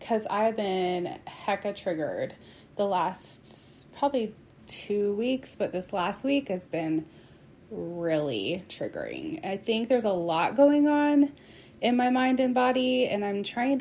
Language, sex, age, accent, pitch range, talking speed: English, female, 20-39, American, 195-230 Hz, 145 wpm